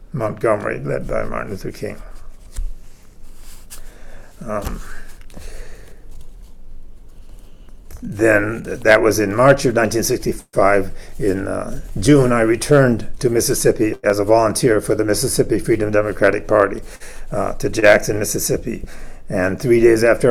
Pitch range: 105-125 Hz